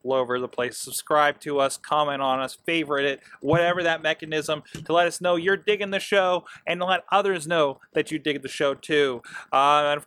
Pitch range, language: 140-170 Hz, English